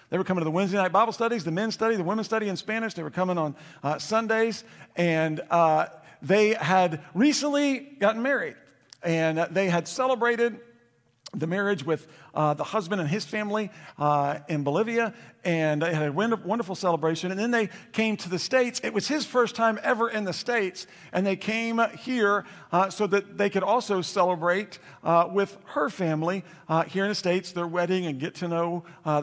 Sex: male